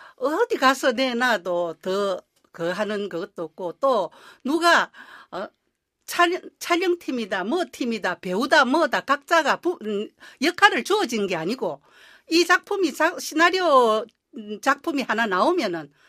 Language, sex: Korean, female